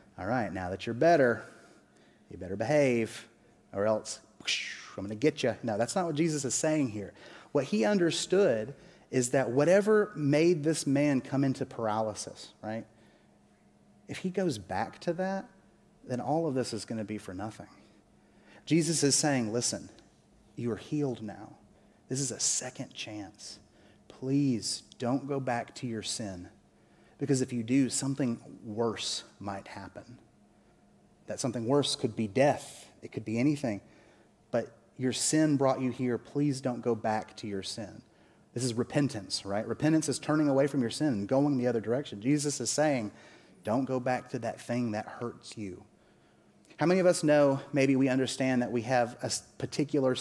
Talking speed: 175 wpm